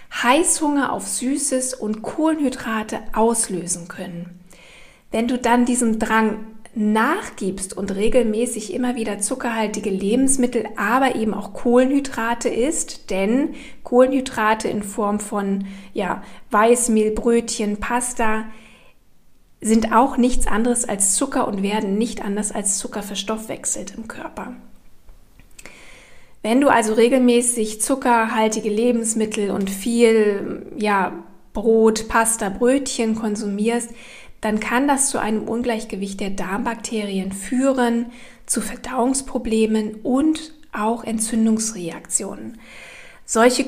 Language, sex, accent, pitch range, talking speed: German, female, German, 215-250 Hz, 105 wpm